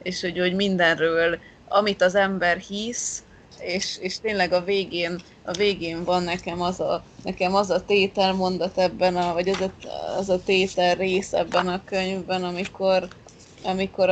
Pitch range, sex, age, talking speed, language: 175-195 Hz, female, 20-39, 135 wpm, Hungarian